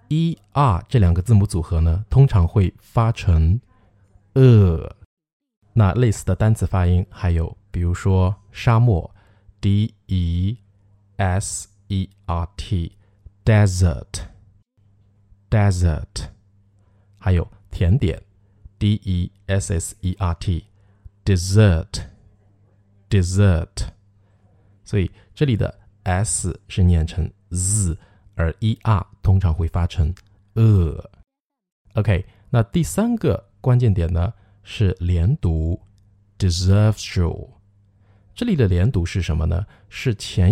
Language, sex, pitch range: Chinese, male, 90-105 Hz